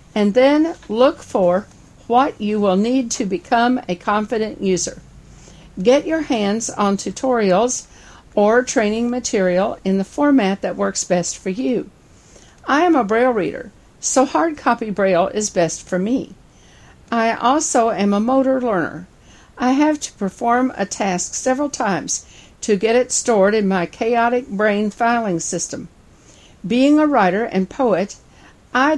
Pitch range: 185-245 Hz